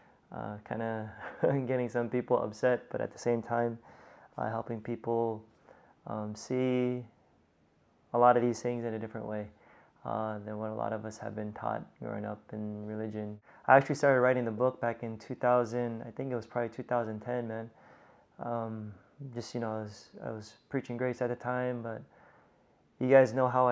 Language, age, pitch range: English, 20-39, 110-125 Hz